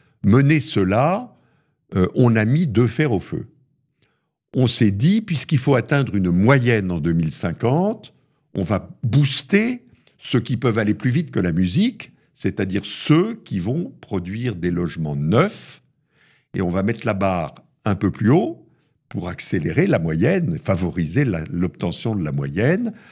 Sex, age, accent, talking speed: male, 60-79, French, 155 wpm